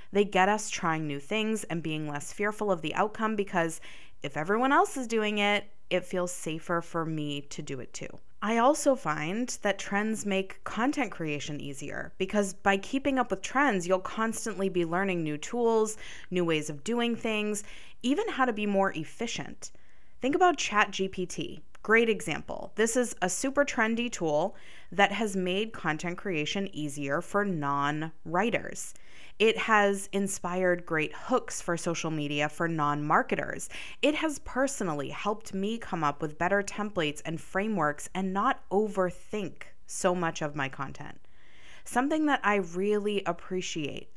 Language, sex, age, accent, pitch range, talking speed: English, female, 20-39, American, 165-220 Hz, 155 wpm